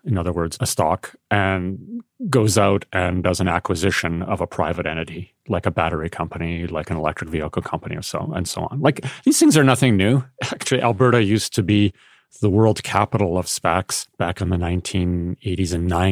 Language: English